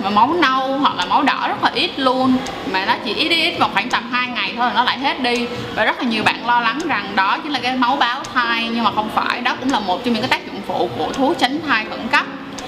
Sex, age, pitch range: female, 20-39, 230-280 Hz